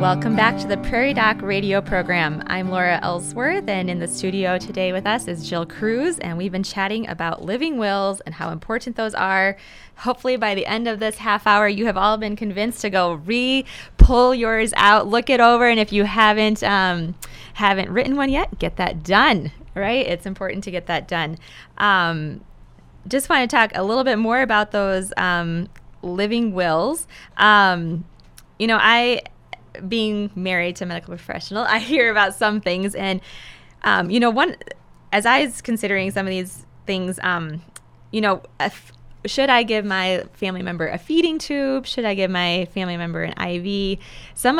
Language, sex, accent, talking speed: English, female, American, 185 wpm